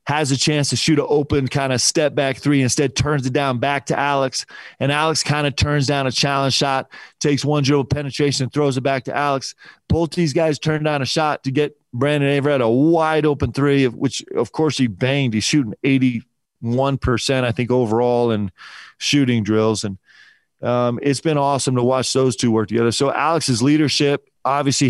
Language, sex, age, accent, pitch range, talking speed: English, male, 30-49, American, 125-145 Hz, 200 wpm